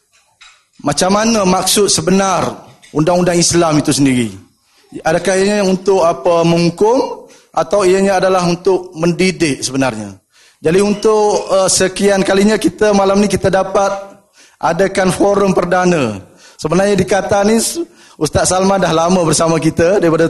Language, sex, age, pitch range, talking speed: Malay, male, 20-39, 160-190 Hz, 125 wpm